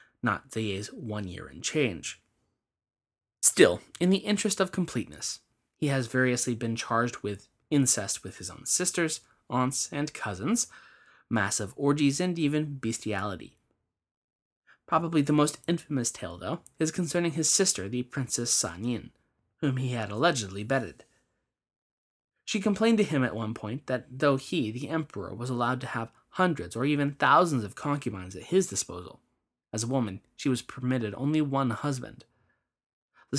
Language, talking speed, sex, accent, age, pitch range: English, 155 wpm, male, American, 20-39, 110-150 Hz